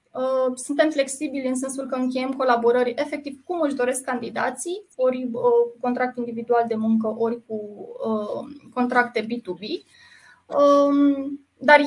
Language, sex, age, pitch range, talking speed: Romanian, female, 20-39, 240-280 Hz, 115 wpm